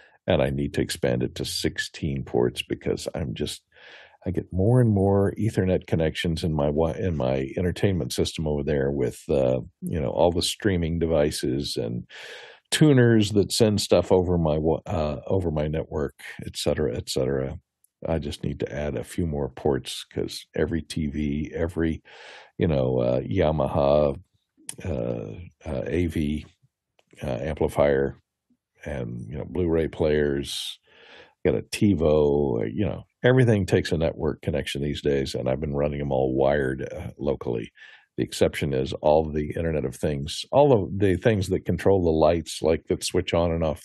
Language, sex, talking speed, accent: English, male, 165 wpm, American